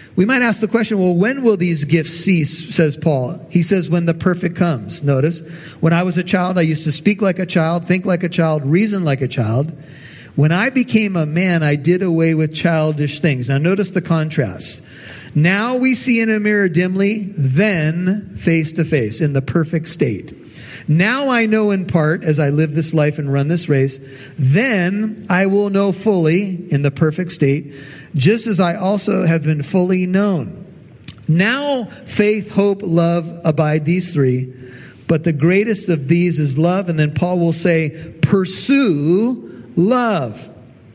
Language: English